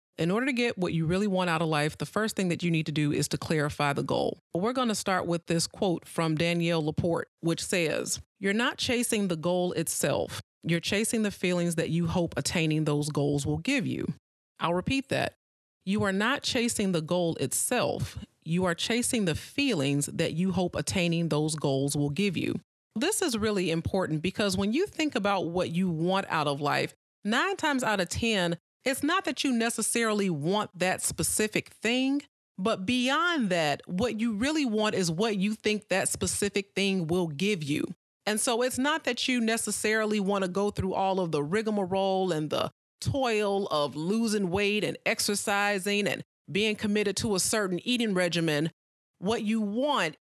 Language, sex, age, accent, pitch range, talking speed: English, female, 30-49, American, 170-220 Hz, 190 wpm